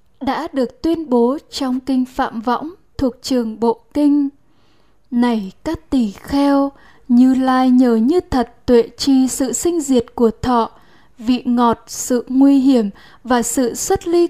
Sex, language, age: female, Vietnamese, 10-29